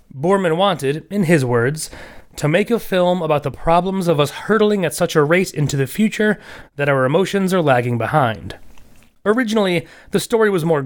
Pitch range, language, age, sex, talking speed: 135-175 Hz, English, 30-49, male, 180 wpm